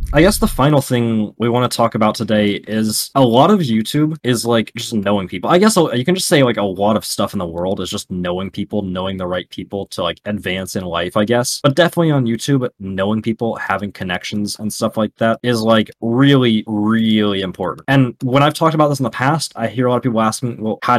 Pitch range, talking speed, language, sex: 100-125 Hz, 245 wpm, English, male